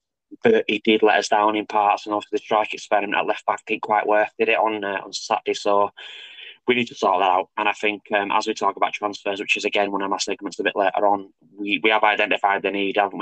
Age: 20-39